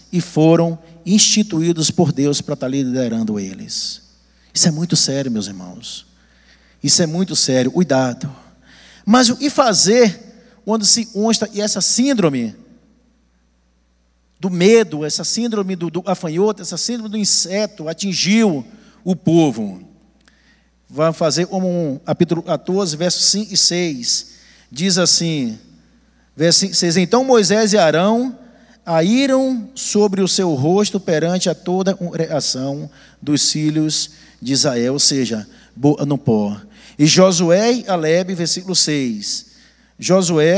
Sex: male